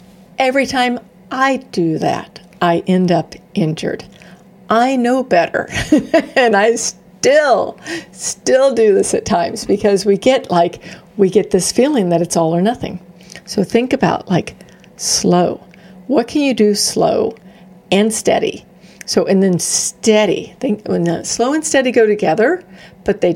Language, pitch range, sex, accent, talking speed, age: English, 175-220 Hz, female, American, 145 wpm, 50-69